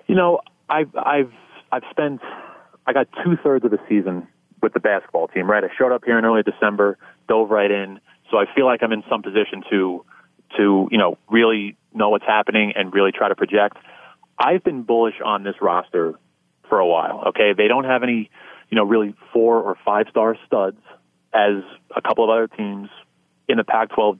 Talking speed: 200 wpm